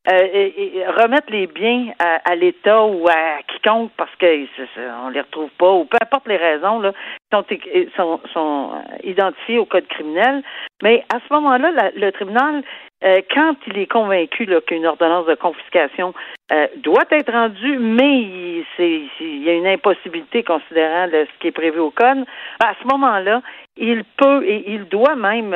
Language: French